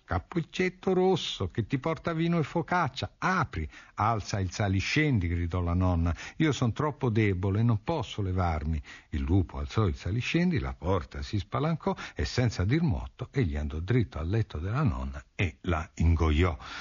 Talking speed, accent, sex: 160 wpm, native, male